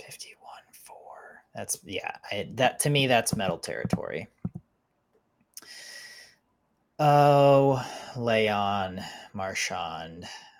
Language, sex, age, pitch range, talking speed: English, male, 20-39, 95-125 Hz, 60 wpm